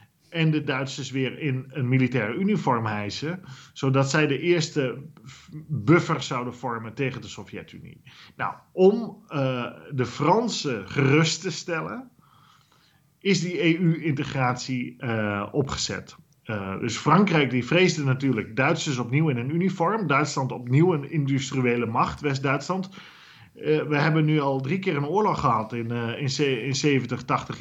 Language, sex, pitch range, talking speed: Dutch, male, 125-155 Hz, 135 wpm